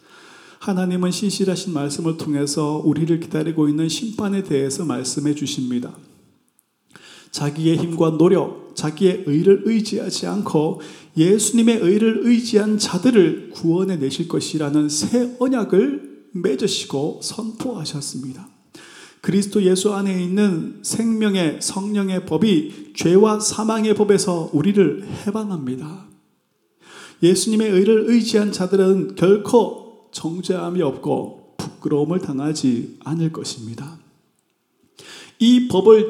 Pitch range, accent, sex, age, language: 150-210 Hz, native, male, 30-49, Korean